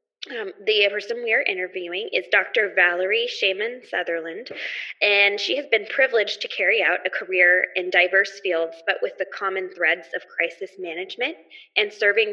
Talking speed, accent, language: 165 wpm, American, English